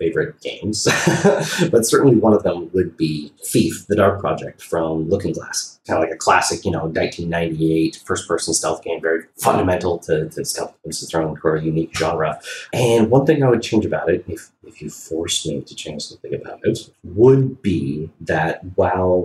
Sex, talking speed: male, 185 wpm